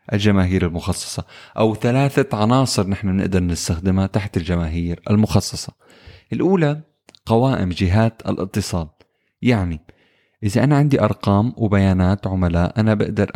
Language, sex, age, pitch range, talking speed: Arabic, male, 20-39, 95-115 Hz, 110 wpm